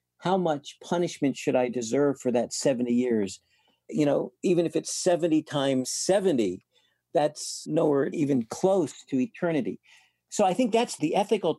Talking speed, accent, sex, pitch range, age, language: 155 wpm, American, male, 135-180 Hz, 50-69, English